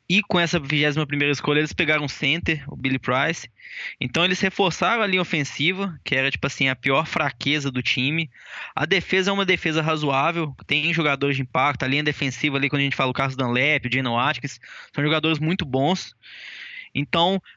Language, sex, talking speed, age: Portuguese, male, 190 wpm, 10-29